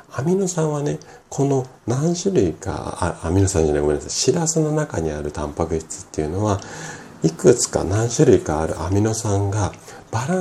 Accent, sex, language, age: native, male, Japanese, 40-59